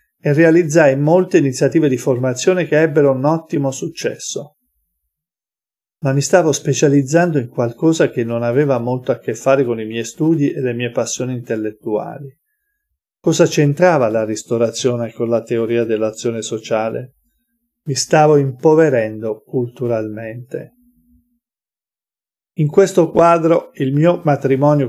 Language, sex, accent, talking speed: Italian, male, native, 125 wpm